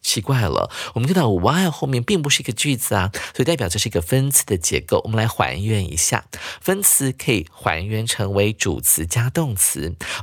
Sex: male